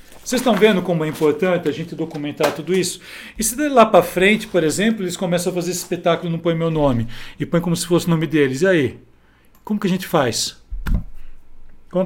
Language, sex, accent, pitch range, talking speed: Portuguese, male, Brazilian, 150-185 Hz, 220 wpm